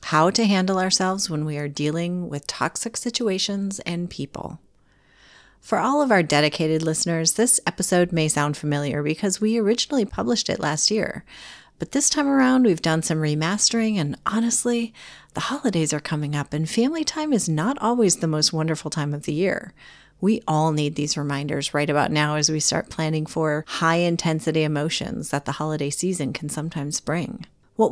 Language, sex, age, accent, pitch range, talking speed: English, female, 30-49, American, 150-215 Hz, 180 wpm